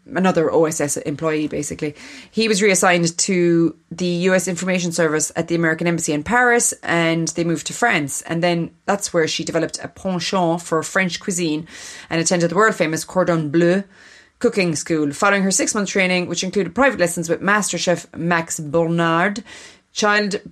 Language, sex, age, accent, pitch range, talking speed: English, female, 30-49, Irish, 160-190 Hz, 160 wpm